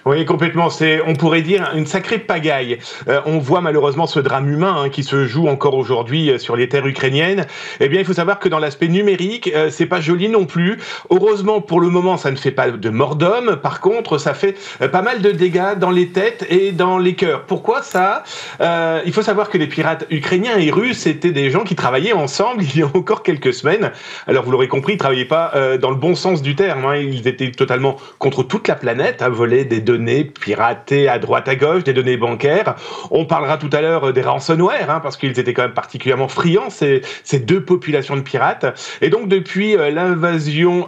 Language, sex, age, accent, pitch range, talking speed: French, male, 40-59, French, 145-195 Hz, 225 wpm